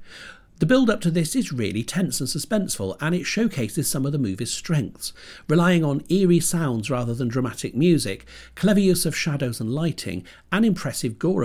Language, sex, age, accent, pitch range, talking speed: English, male, 50-69, British, 115-175 Hz, 180 wpm